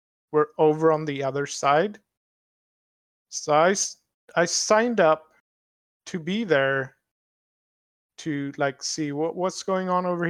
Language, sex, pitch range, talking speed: English, male, 140-180 Hz, 130 wpm